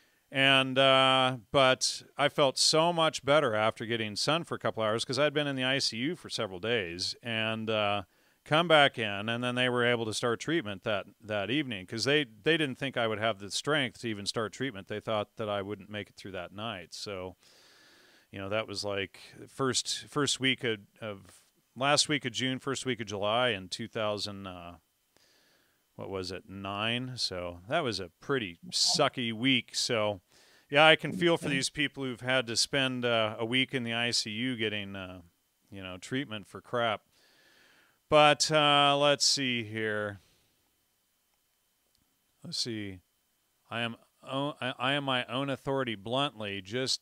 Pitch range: 105-135 Hz